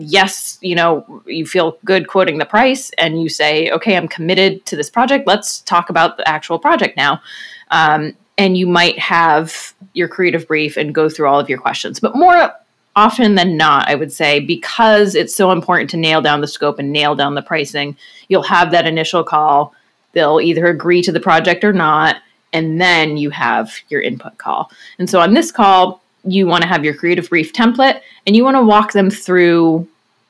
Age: 30-49